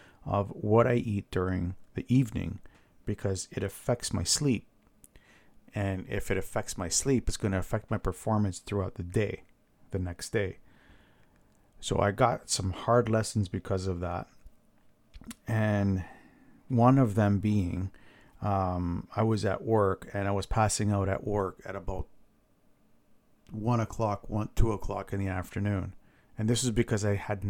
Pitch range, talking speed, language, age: 95-115 Hz, 155 wpm, English, 50-69